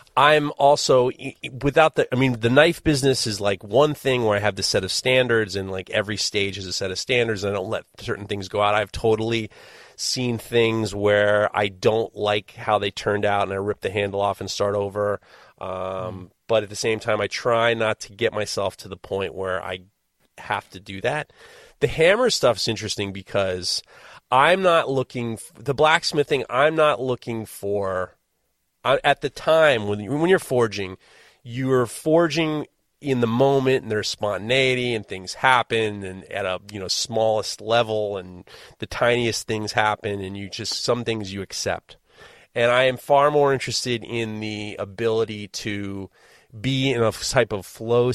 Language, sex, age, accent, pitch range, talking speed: English, male, 30-49, American, 100-125 Hz, 185 wpm